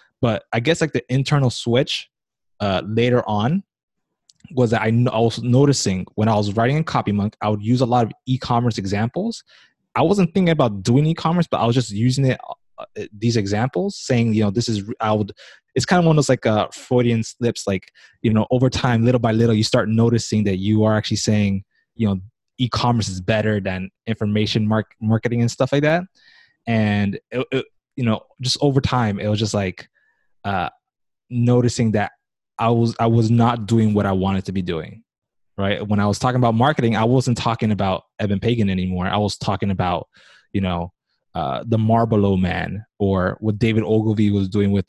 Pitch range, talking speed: 100-120 Hz, 195 wpm